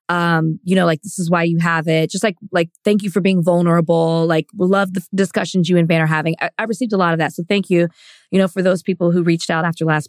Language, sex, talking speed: English, female, 290 wpm